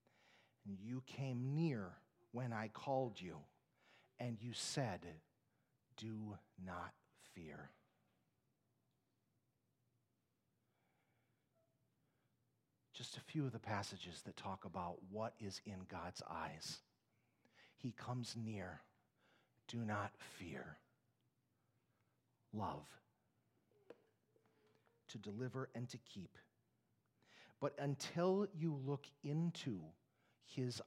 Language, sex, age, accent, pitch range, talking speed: English, male, 40-59, American, 115-165 Hz, 85 wpm